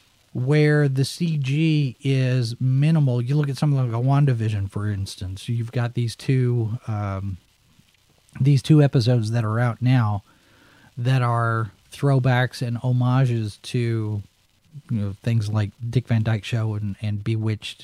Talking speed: 130 wpm